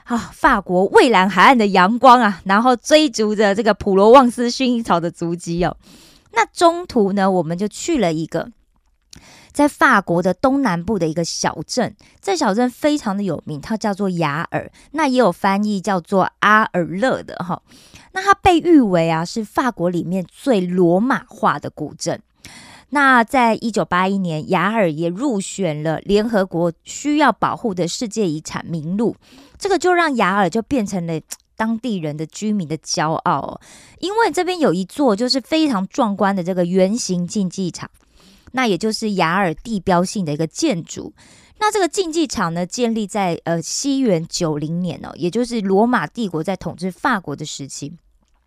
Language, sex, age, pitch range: Korean, female, 20-39, 175-250 Hz